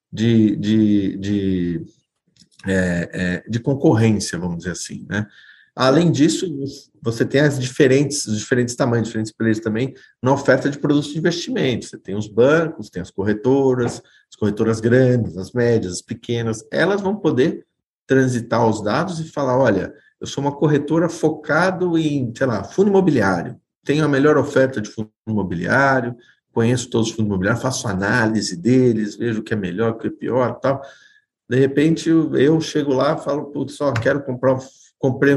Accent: Brazilian